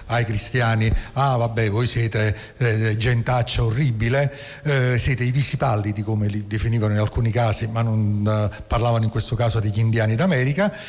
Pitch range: 110-140 Hz